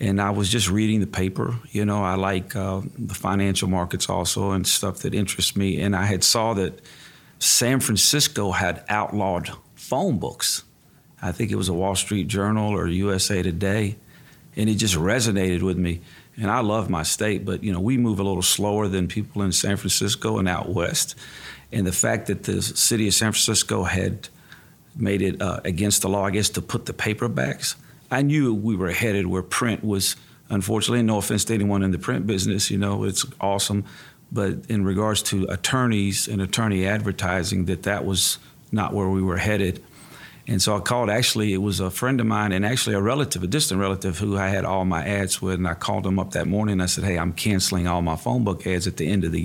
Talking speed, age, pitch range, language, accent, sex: 215 wpm, 50-69, 95-110 Hz, English, American, male